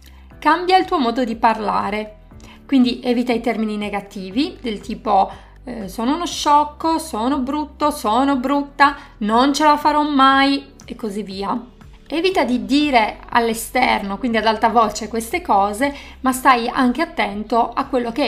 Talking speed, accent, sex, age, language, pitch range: 150 wpm, native, female, 30-49, Italian, 220-280 Hz